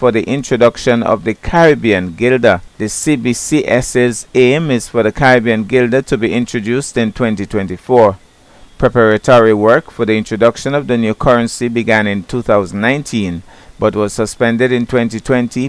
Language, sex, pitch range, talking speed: English, male, 110-125 Hz, 140 wpm